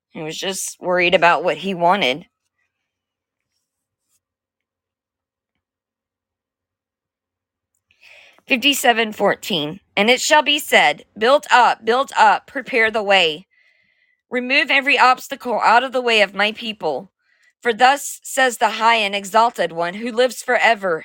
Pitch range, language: 190-250 Hz, English